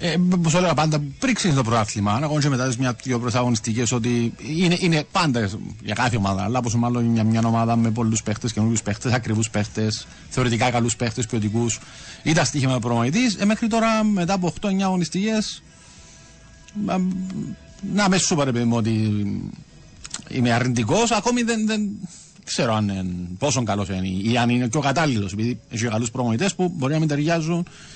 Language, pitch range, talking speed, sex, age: Greek, 115-170 Hz, 155 wpm, male, 50-69